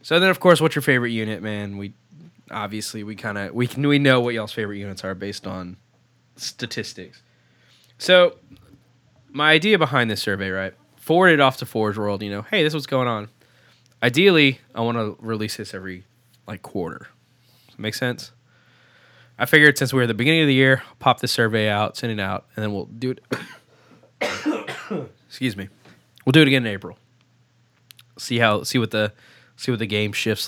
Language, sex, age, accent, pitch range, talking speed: English, male, 10-29, American, 105-130 Hz, 195 wpm